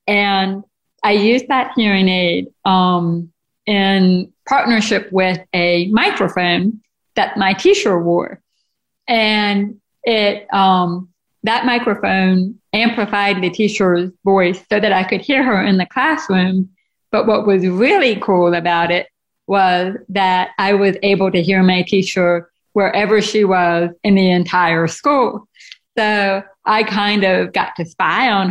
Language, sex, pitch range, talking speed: English, female, 180-205 Hz, 135 wpm